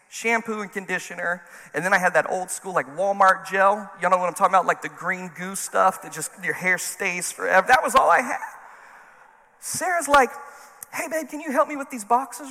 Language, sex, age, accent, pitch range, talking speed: English, male, 40-59, American, 180-285 Hz, 220 wpm